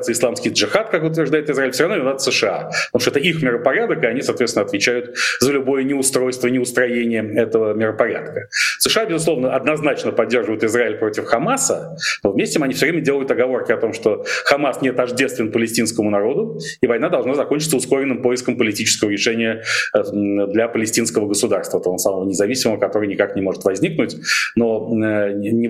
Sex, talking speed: male, 155 wpm